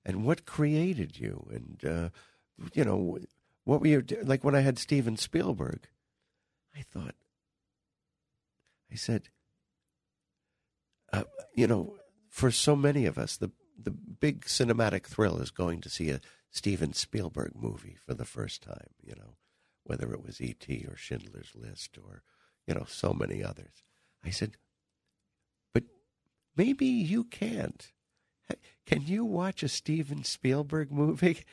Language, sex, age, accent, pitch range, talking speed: English, male, 60-79, American, 100-145 Hz, 140 wpm